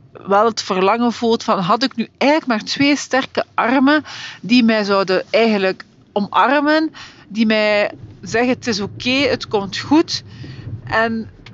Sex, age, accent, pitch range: female, 40-59, Dutch, 190-245 Hz